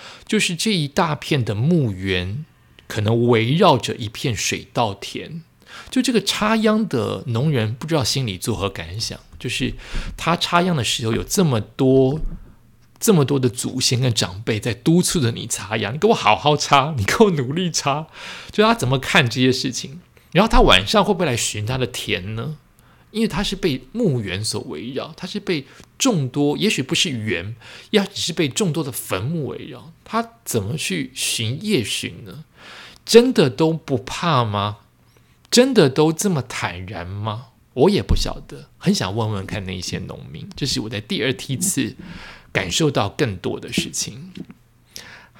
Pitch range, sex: 115-175 Hz, male